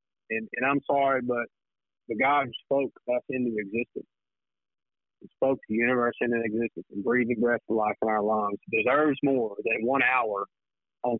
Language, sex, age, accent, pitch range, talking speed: English, male, 40-59, American, 115-140 Hz, 175 wpm